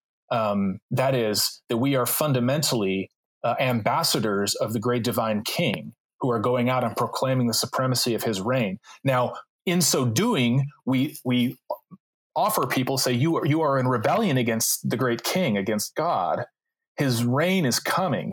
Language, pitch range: English, 120-155 Hz